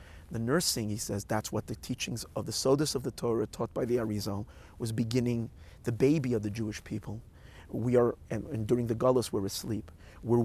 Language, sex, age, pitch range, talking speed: English, male, 30-49, 105-125 Hz, 205 wpm